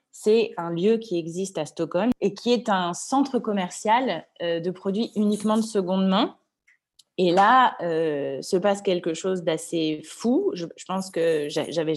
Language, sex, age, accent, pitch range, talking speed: French, female, 20-39, French, 165-215 Hz, 160 wpm